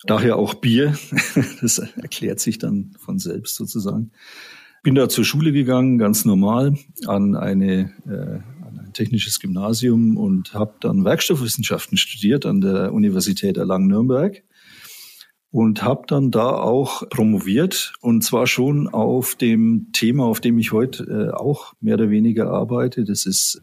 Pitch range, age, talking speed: 110-150 Hz, 40-59, 140 wpm